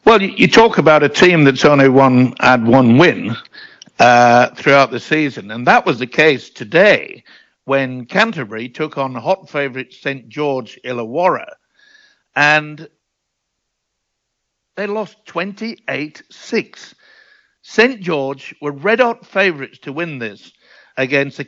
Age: 60-79